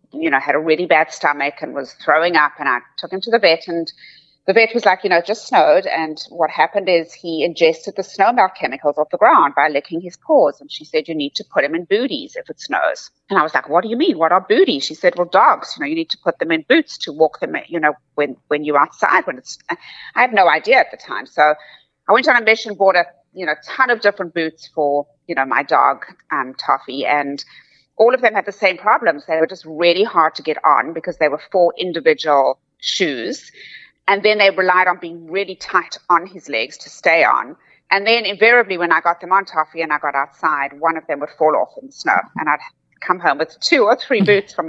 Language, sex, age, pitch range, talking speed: English, female, 30-49, 155-200 Hz, 255 wpm